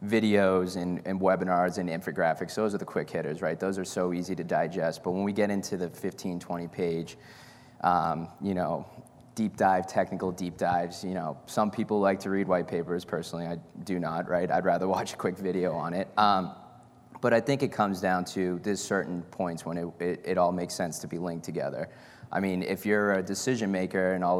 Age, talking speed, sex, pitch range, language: 20-39, 215 wpm, male, 90-100 Hz, English